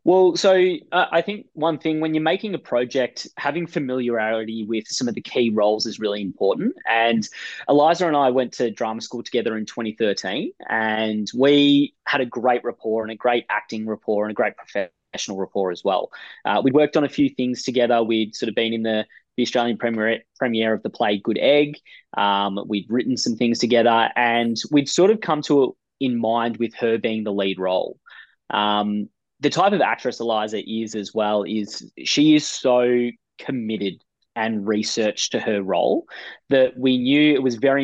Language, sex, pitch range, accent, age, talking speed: English, male, 110-130 Hz, Australian, 20-39, 190 wpm